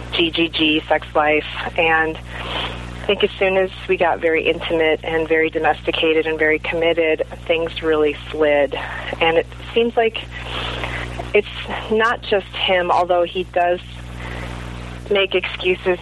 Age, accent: 40-59, American